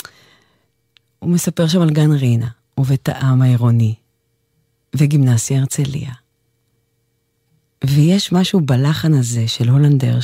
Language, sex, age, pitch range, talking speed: English, female, 40-59, 120-155 Hz, 100 wpm